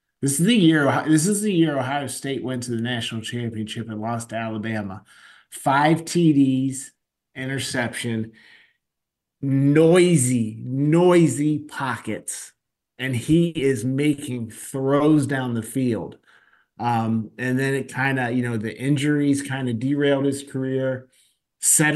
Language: English